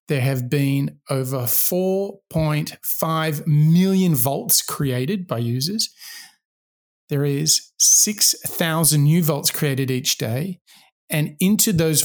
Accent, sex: Australian, male